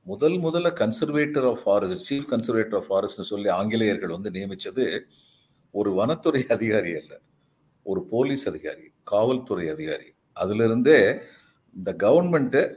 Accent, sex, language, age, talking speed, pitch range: native, male, Tamil, 50-69, 115 wpm, 110-150 Hz